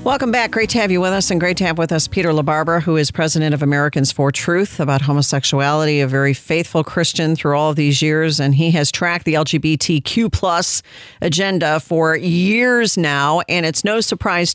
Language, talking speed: English, 200 wpm